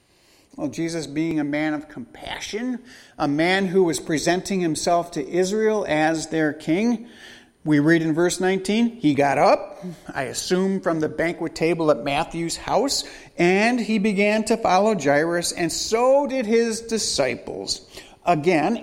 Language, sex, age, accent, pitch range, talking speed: English, male, 50-69, American, 155-215 Hz, 150 wpm